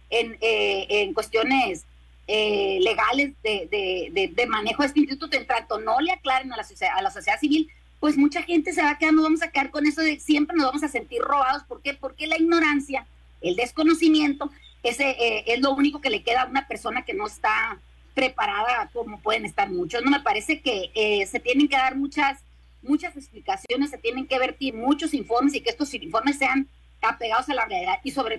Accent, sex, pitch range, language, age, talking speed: Mexican, female, 235-300 Hz, Spanish, 40-59, 210 wpm